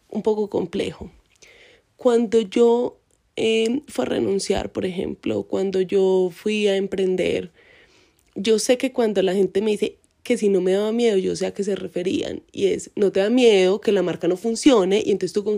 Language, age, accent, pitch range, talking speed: Spanish, 20-39, Colombian, 185-225 Hz, 195 wpm